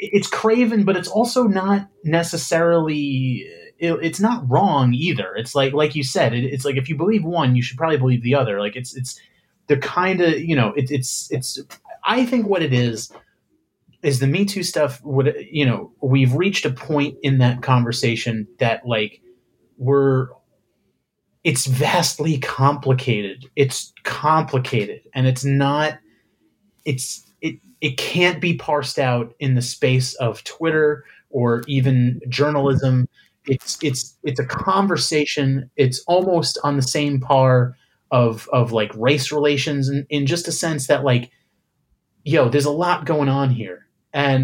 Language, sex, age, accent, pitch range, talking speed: English, male, 30-49, American, 130-155 Hz, 160 wpm